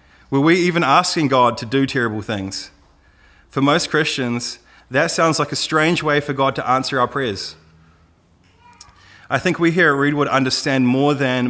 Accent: Australian